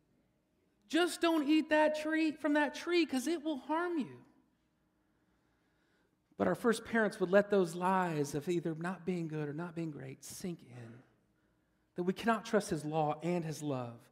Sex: male